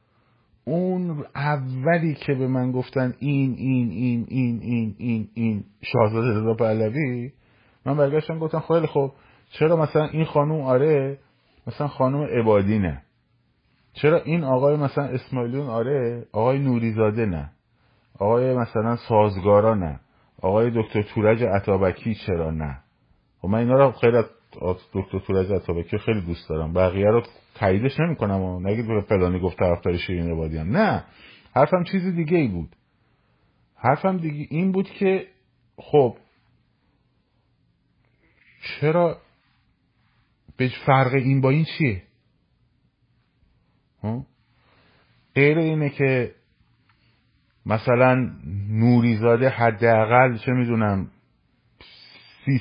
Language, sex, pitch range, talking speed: Persian, male, 105-140 Hz, 110 wpm